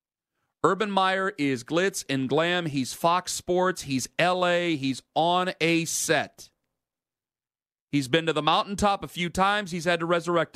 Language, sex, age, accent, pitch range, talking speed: English, male, 40-59, American, 135-175 Hz, 155 wpm